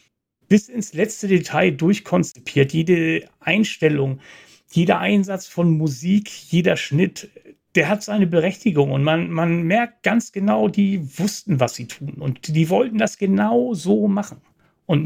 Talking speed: 145 wpm